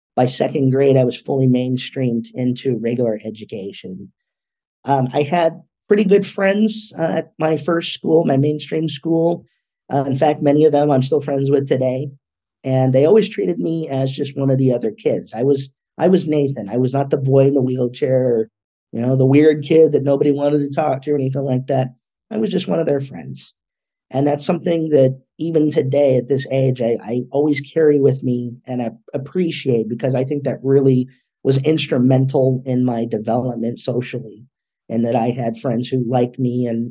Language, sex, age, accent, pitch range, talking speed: English, male, 40-59, American, 125-150 Hz, 195 wpm